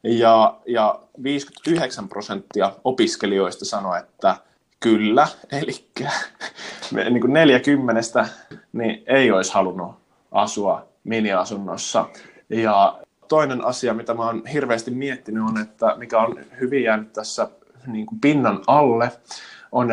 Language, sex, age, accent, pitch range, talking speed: Finnish, male, 20-39, native, 110-130 Hz, 115 wpm